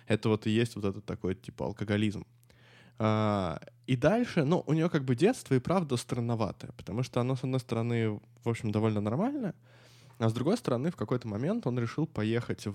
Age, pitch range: 20-39, 110-130 Hz